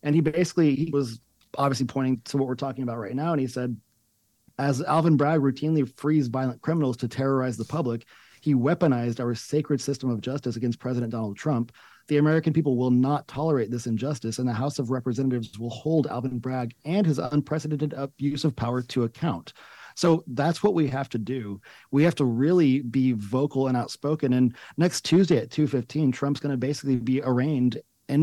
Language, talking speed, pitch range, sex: English, 195 wpm, 125-150 Hz, male